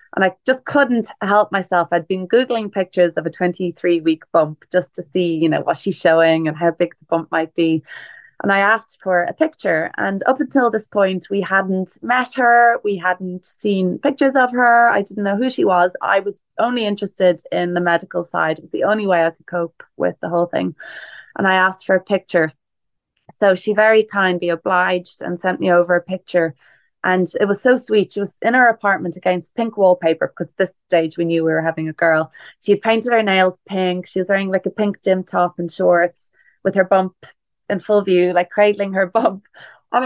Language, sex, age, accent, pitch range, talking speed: English, female, 20-39, Irish, 175-225 Hz, 215 wpm